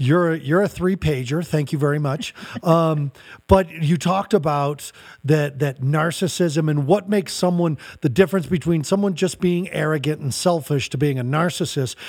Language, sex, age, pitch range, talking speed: English, male, 40-59, 140-185 Hz, 170 wpm